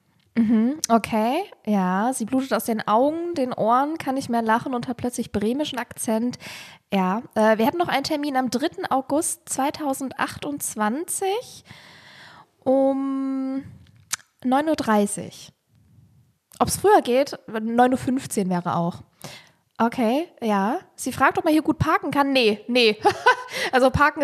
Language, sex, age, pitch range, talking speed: German, female, 10-29, 230-285 Hz, 130 wpm